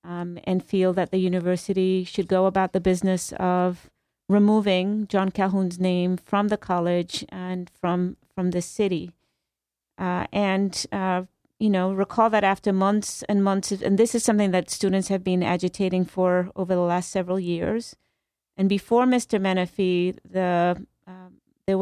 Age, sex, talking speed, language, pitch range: 40-59, female, 160 wpm, English, 180-200 Hz